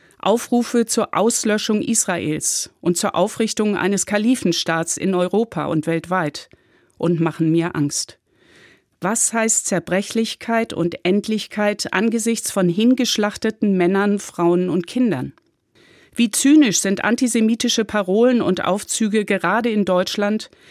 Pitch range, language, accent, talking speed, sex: 175-220 Hz, German, German, 115 wpm, female